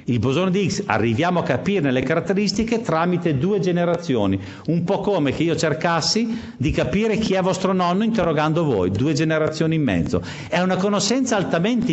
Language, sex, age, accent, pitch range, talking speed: Italian, male, 50-69, native, 140-215 Hz, 170 wpm